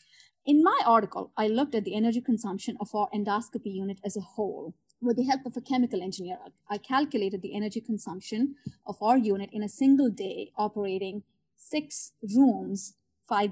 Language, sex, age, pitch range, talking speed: English, female, 30-49, 205-265 Hz, 175 wpm